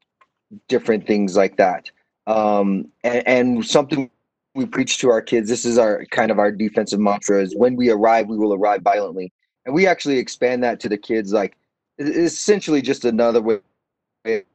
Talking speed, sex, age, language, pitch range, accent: 175 wpm, male, 30-49, English, 100-125 Hz, American